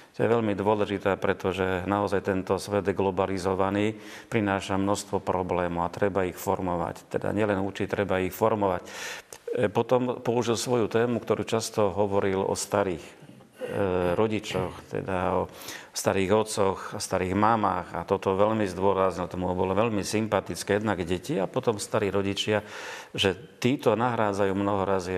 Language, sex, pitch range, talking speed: Slovak, male, 95-110 Hz, 140 wpm